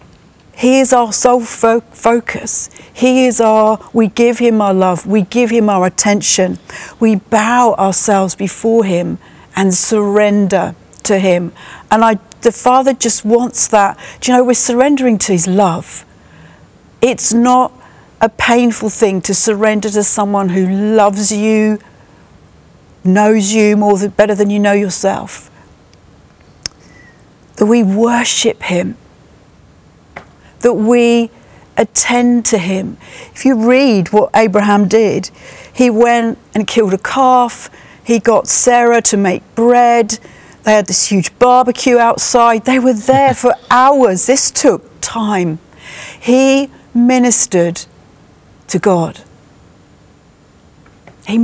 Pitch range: 205-245 Hz